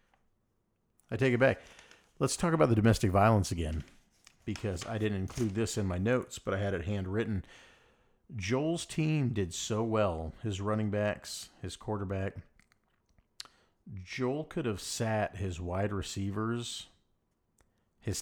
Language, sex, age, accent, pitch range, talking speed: English, male, 40-59, American, 90-110 Hz, 140 wpm